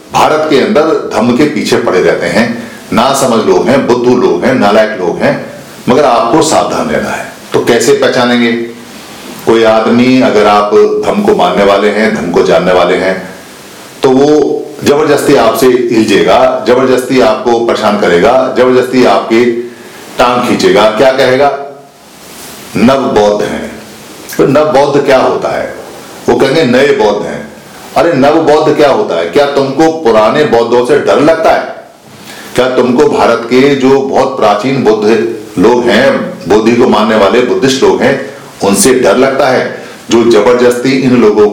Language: Hindi